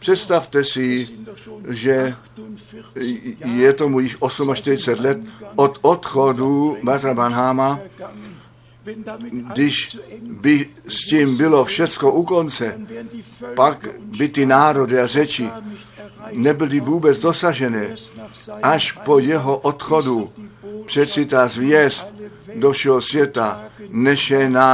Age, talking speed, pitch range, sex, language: 60-79, 95 wpm, 125-165 Hz, male, Czech